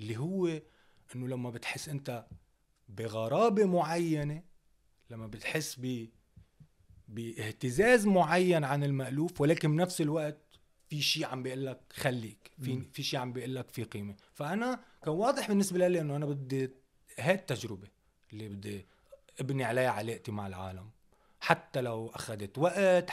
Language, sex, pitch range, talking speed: Arabic, male, 105-150 Hz, 135 wpm